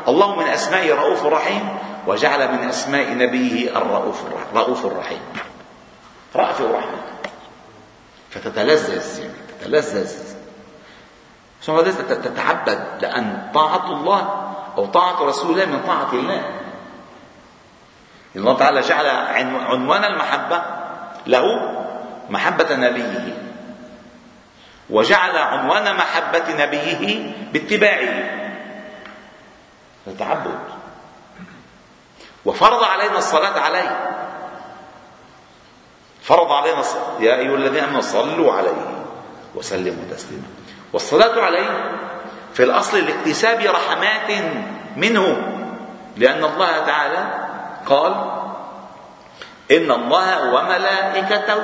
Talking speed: 75 wpm